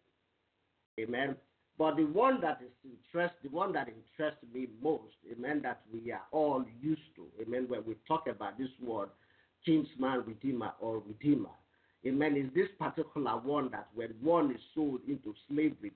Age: 50-69